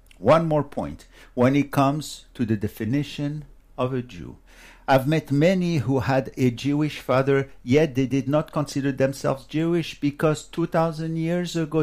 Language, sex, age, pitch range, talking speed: English, male, 60-79, 130-165 Hz, 155 wpm